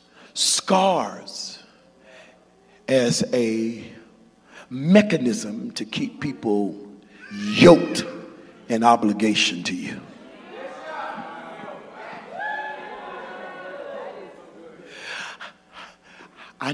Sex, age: male, 50-69